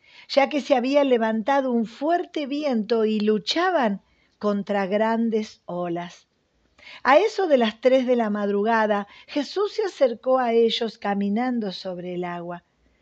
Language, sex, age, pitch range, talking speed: Spanish, female, 50-69, 210-295 Hz, 140 wpm